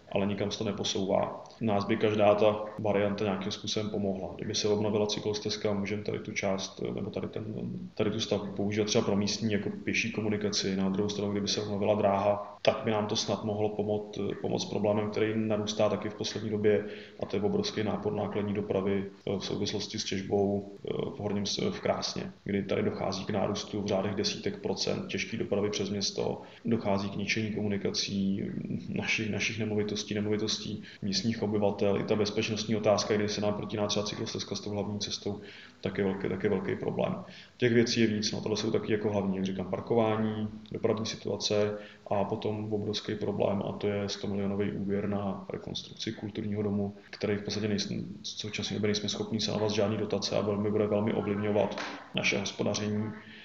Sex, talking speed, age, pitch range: male, 185 wpm, 20-39, 100-110 Hz